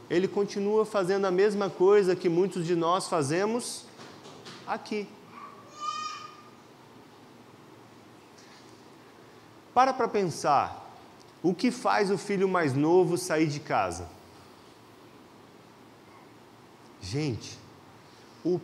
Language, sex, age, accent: Portuguese, male, 30-49, Brazilian